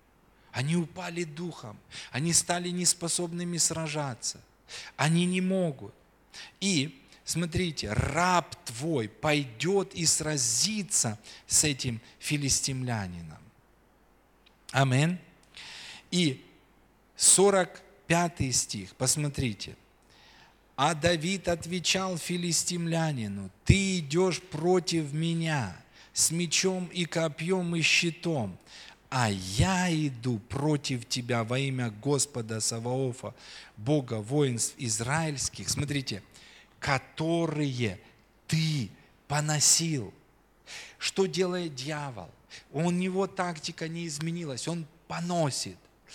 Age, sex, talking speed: 40-59, male, 85 wpm